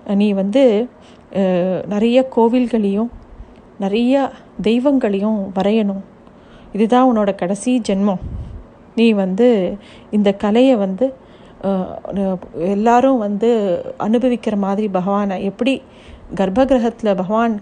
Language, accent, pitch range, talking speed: Tamil, native, 205-250 Hz, 80 wpm